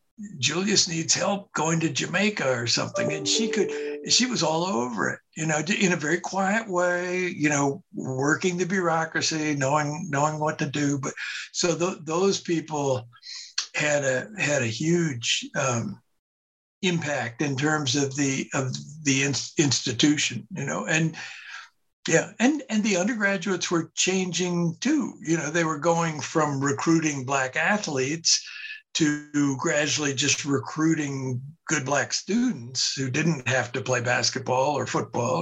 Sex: male